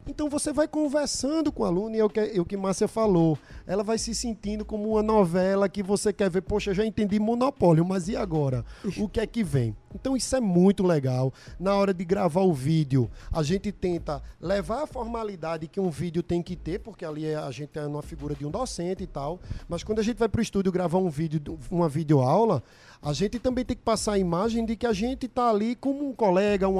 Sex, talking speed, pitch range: male, 230 wpm, 165-215 Hz